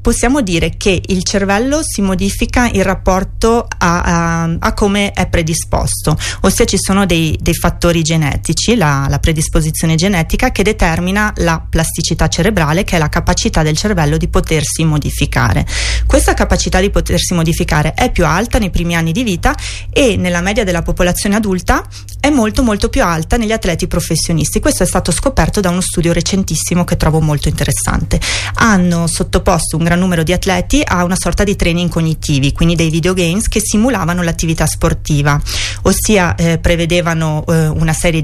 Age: 30-49